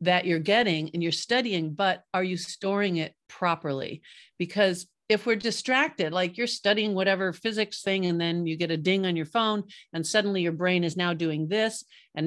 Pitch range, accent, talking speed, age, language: 170-210 Hz, American, 195 wpm, 50-69, English